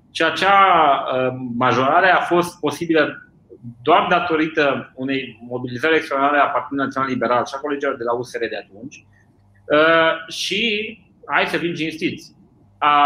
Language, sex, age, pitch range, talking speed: Romanian, male, 30-49, 135-175 Hz, 130 wpm